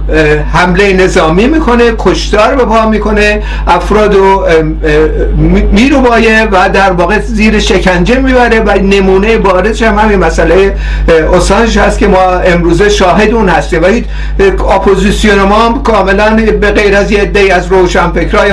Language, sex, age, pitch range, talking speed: Persian, male, 50-69, 170-210 Hz, 130 wpm